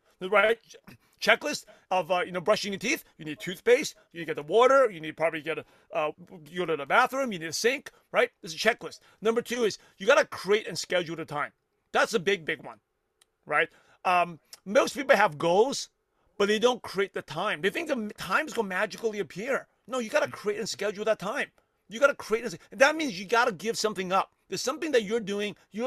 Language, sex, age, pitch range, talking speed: English, male, 40-59, 185-240 Hz, 230 wpm